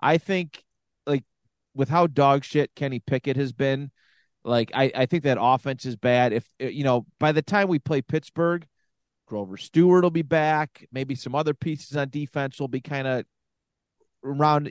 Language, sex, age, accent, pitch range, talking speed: English, male, 30-49, American, 125-155 Hz, 180 wpm